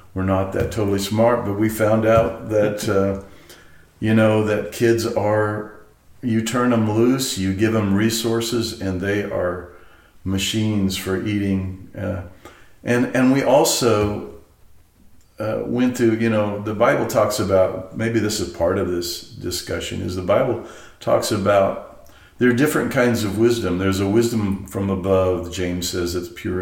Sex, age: male, 50-69